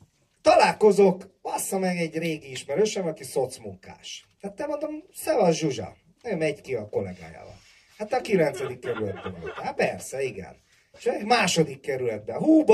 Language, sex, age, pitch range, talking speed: Hungarian, male, 30-49, 155-210 Hz, 145 wpm